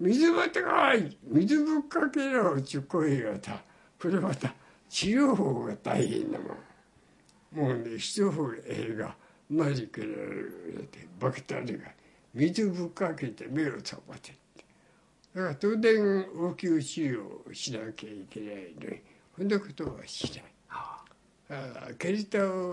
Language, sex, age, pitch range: Japanese, male, 60-79, 135-215 Hz